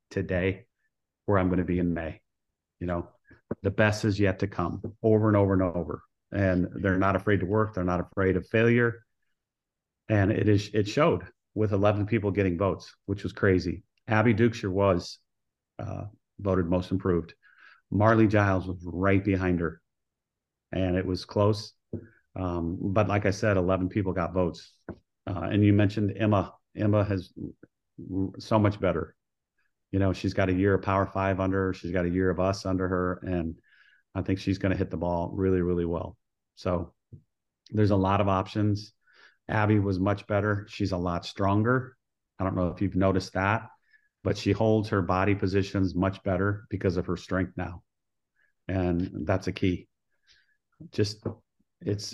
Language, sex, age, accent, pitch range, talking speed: English, male, 40-59, American, 90-105 Hz, 175 wpm